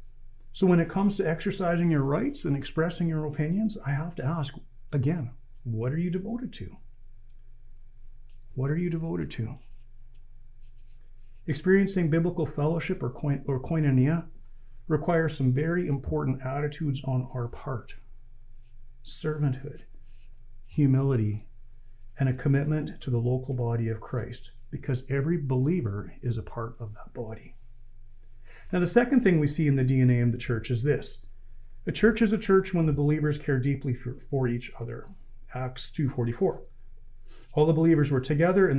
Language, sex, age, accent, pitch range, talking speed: English, male, 40-59, American, 120-155 Hz, 150 wpm